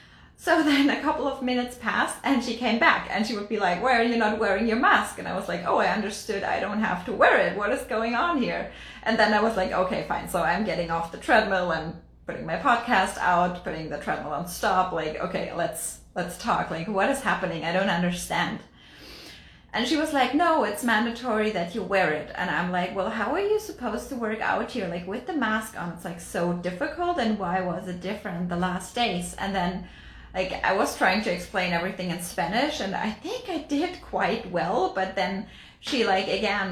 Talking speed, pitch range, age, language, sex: 225 wpm, 180-250 Hz, 30-49, English, female